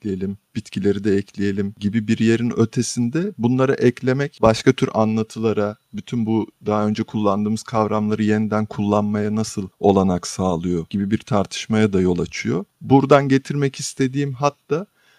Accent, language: native, Turkish